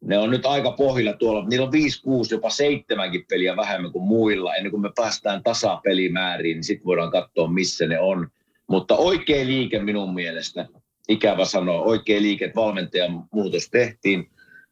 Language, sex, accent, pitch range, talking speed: Finnish, male, native, 100-130 Hz, 165 wpm